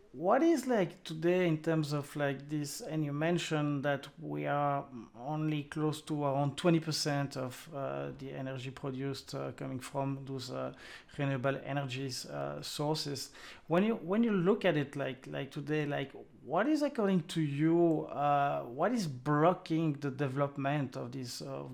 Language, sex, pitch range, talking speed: English, male, 130-150 Hz, 165 wpm